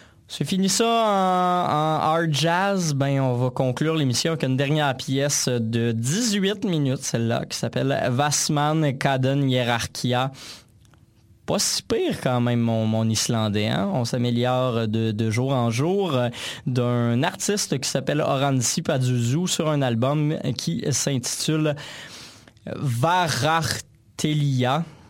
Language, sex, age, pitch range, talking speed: French, male, 20-39, 120-150 Hz, 125 wpm